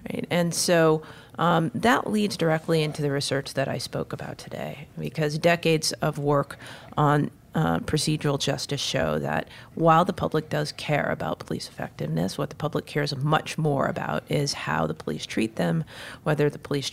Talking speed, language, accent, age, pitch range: 170 wpm, English, American, 40-59, 135-165 Hz